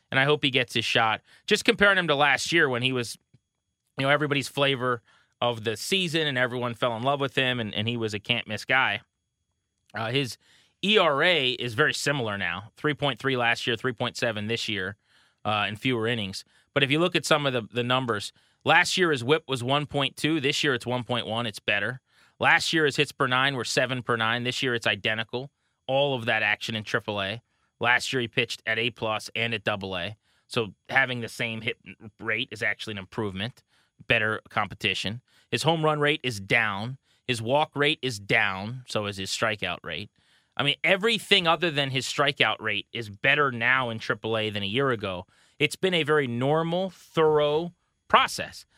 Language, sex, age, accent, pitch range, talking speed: English, male, 30-49, American, 110-140 Hz, 195 wpm